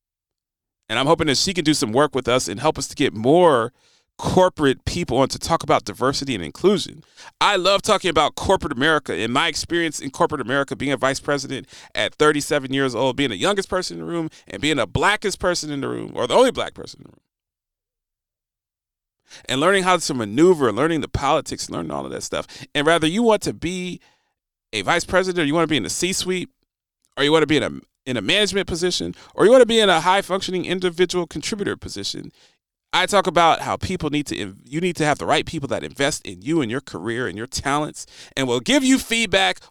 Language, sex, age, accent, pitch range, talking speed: English, male, 40-59, American, 135-185 Hz, 230 wpm